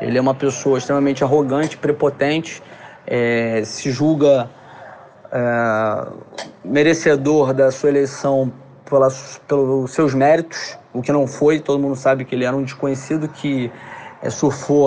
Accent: Brazilian